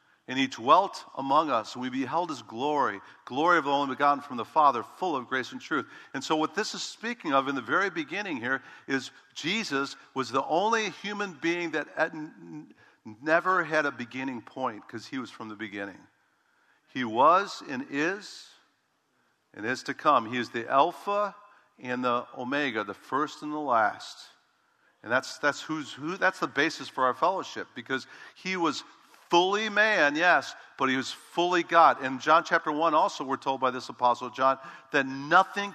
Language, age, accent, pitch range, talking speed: English, 50-69, American, 135-175 Hz, 180 wpm